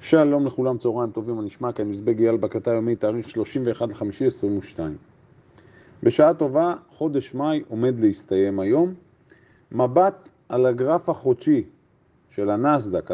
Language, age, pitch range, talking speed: Hebrew, 40-59, 115-155 Hz, 125 wpm